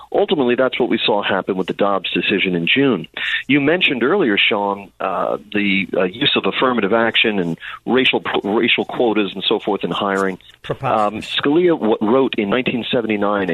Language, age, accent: English, 40-59, American